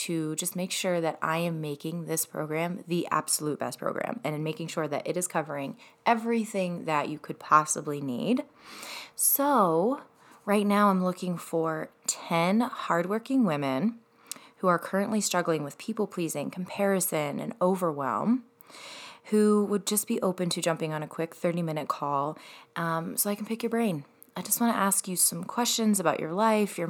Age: 20-39